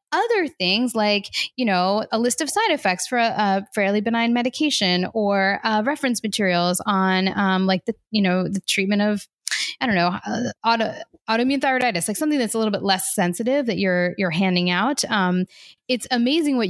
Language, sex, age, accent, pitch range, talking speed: English, female, 10-29, American, 185-230 Hz, 185 wpm